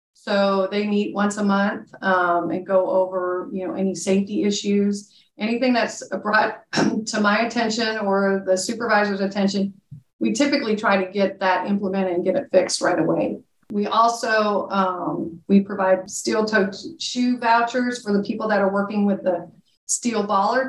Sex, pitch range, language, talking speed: female, 185-210 Hz, English, 165 wpm